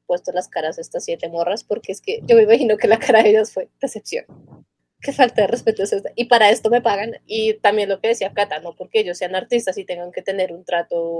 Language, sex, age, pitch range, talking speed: Spanish, female, 20-39, 190-280 Hz, 250 wpm